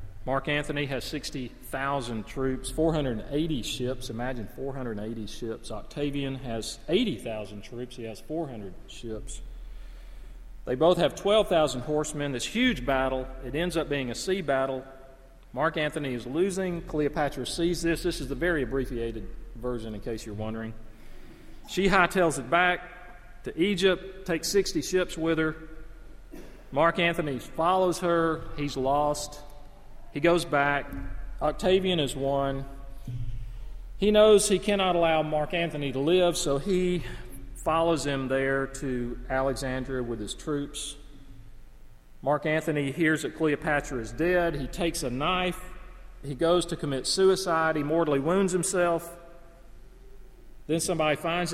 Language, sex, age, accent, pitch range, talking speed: English, male, 40-59, American, 130-170 Hz, 135 wpm